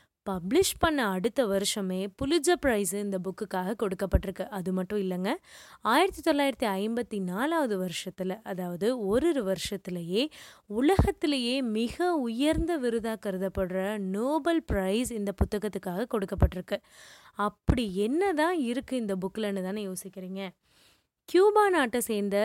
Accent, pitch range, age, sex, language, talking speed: native, 195-270 Hz, 20-39, female, Tamil, 110 wpm